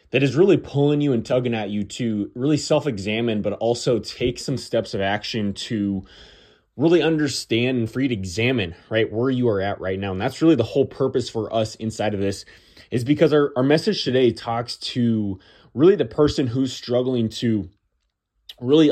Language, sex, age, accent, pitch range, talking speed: English, male, 20-39, American, 105-130 Hz, 190 wpm